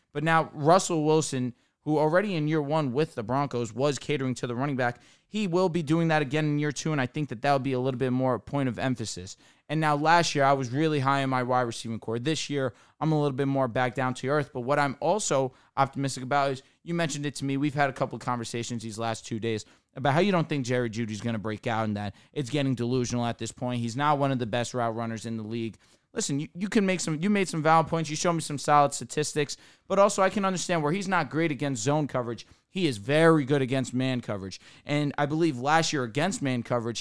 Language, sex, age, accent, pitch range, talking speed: English, male, 20-39, American, 125-155 Hz, 265 wpm